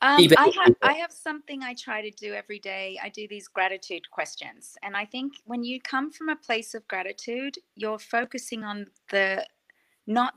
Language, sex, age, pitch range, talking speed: English, female, 30-49, 185-230 Hz, 190 wpm